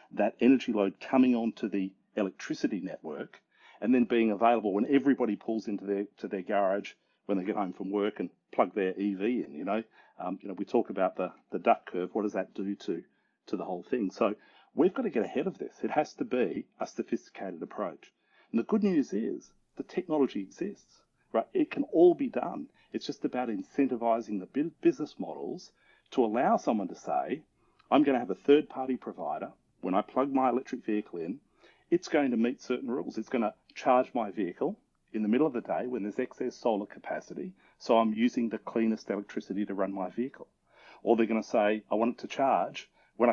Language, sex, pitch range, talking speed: English, male, 105-130 Hz, 210 wpm